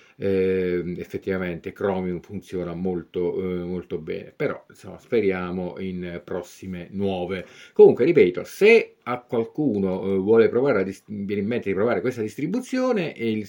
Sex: male